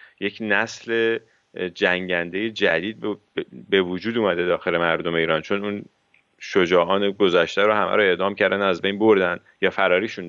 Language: English